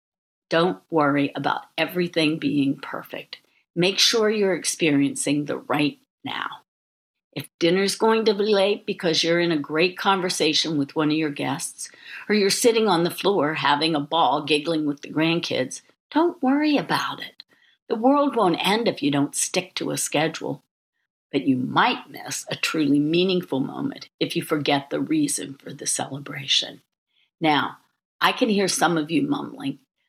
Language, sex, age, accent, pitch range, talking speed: English, female, 50-69, American, 150-210 Hz, 165 wpm